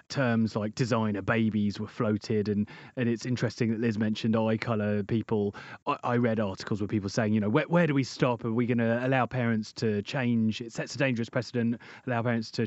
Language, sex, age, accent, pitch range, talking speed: English, male, 30-49, British, 110-140 Hz, 220 wpm